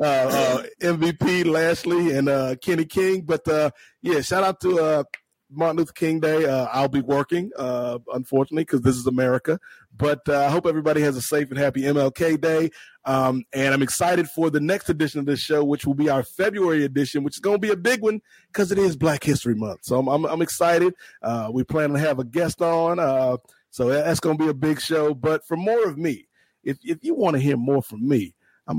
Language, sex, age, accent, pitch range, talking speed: English, male, 30-49, American, 130-160 Hz, 225 wpm